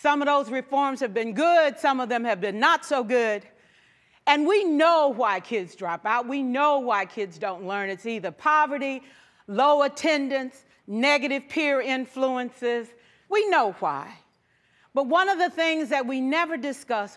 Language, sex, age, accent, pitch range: Japanese, female, 40-59, American, 240-320 Hz